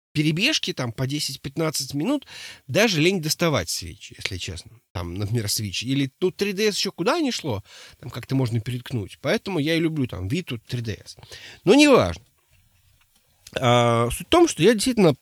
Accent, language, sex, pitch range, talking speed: native, Russian, male, 120-185 Hz, 165 wpm